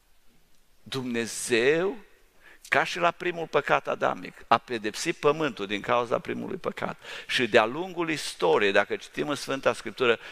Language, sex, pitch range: English, male, 105-150 Hz